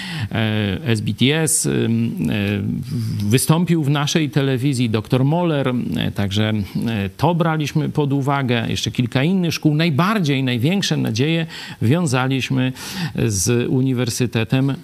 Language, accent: Polish, native